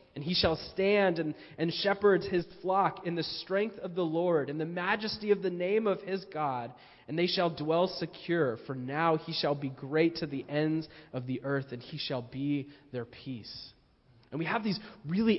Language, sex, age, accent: English, male, 20-39, American